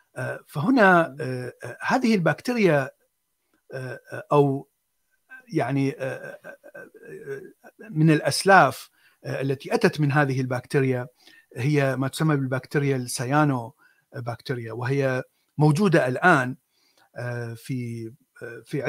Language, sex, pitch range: Arabic, male, 130-160 Hz